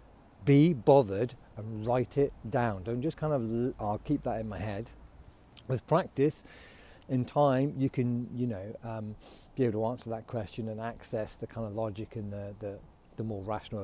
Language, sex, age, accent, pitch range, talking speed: English, male, 40-59, British, 95-115 Hz, 185 wpm